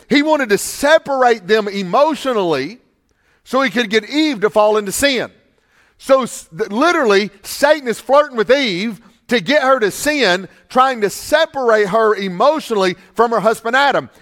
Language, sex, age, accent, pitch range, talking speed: English, male, 40-59, American, 195-255 Hz, 150 wpm